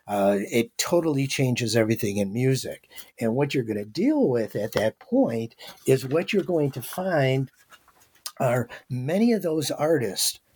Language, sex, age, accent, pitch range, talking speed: English, male, 60-79, American, 115-145 Hz, 160 wpm